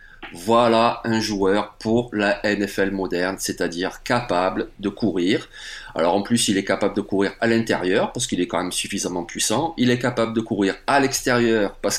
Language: French